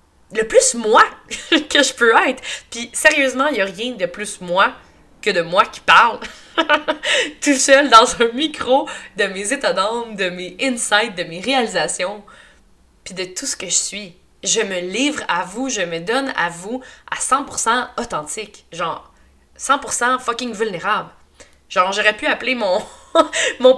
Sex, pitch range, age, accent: female, 185-260 Hz, 20-39, Canadian